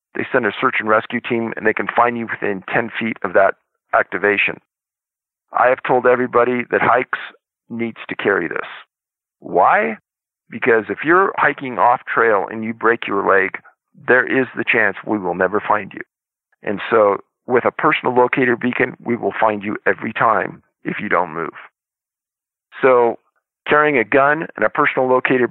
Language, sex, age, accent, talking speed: English, male, 50-69, American, 175 wpm